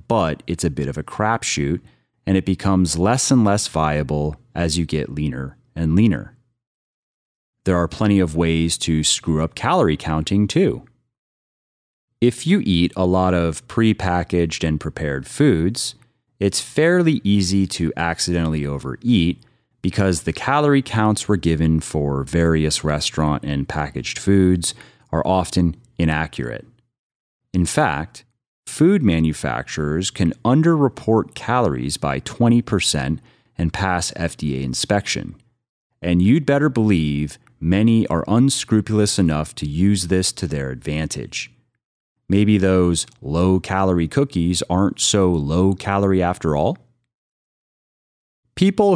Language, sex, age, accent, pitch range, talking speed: English, male, 30-49, American, 80-110 Hz, 120 wpm